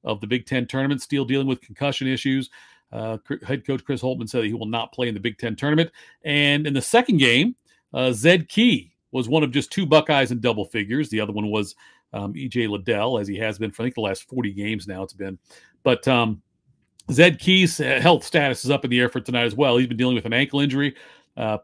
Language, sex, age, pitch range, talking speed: English, male, 40-59, 115-140 Hz, 245 wpm